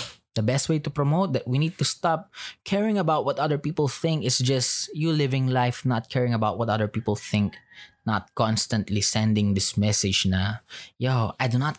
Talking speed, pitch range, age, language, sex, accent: 195 wpm, 105-150 Hz, 20-39, Filipino, male, native